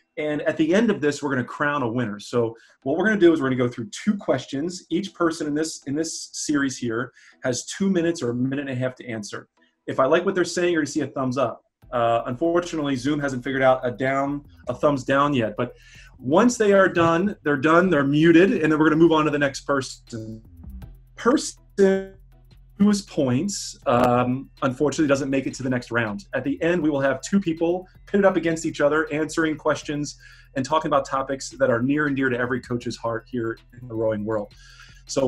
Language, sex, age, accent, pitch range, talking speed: English, male, 30-49, American, 125-165 Hz, 230 wpm